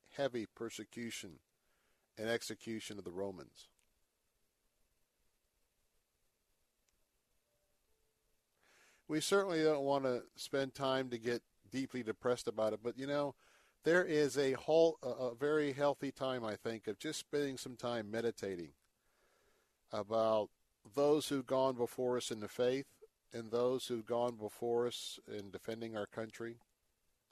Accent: American